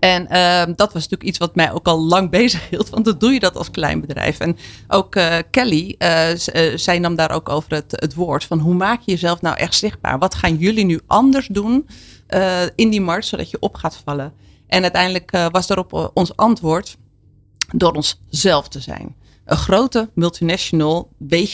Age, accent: 40-59, Dutch